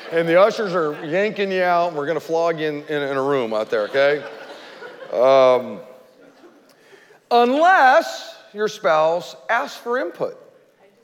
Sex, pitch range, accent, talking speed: male, 150-220 Hz, American, 150 wpm